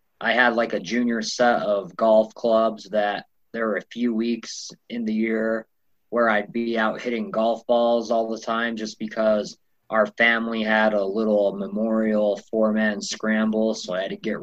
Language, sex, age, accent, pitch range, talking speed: English, male, 20-39, American, 110-120 Hz, 180 wpm